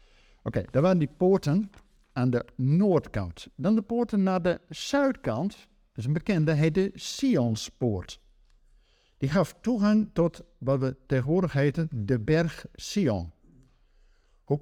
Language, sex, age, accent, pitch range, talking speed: Dutch, male, 50-69, Dutch, 120-170 Hz, 140 wpm